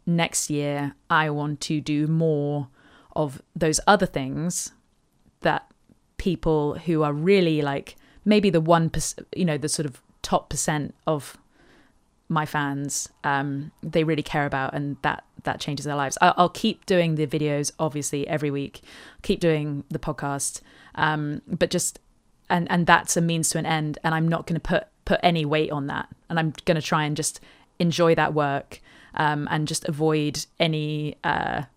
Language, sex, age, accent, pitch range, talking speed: English, female, 20-39, British, 150-175 Hz, 175 wpm